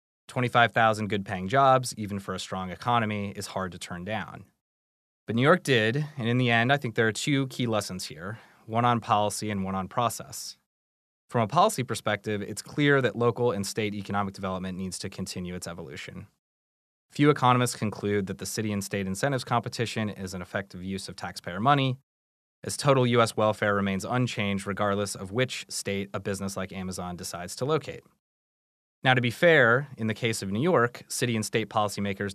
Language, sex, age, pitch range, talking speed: English, male, 30-49, 95-120 Hz, 185 wpm